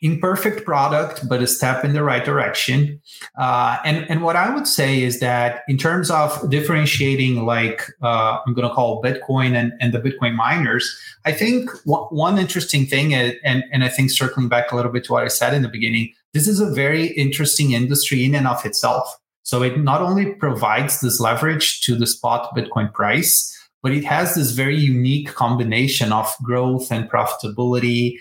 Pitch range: 125-155 Hz